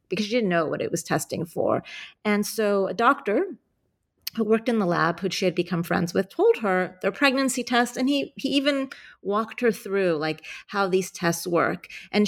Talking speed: 205 wpm